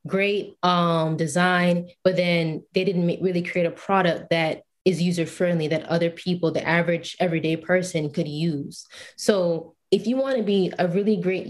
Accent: American